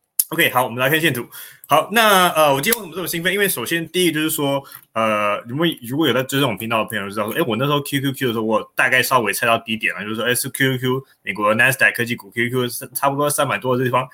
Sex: male